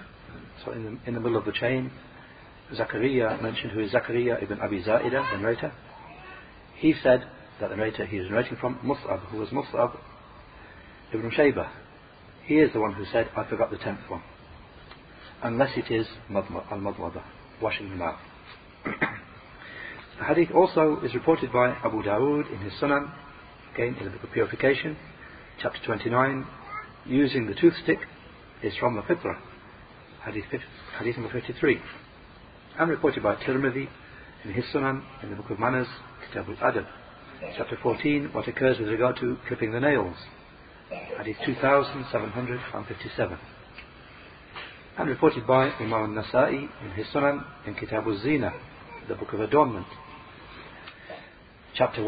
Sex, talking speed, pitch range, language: male, 140 wpm, 110-140 Hz, English